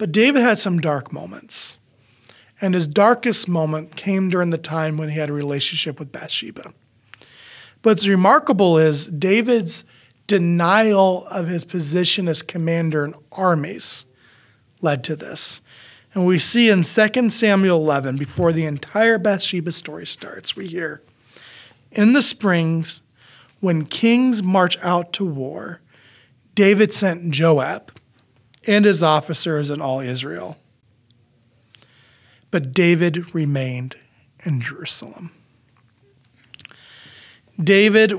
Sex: male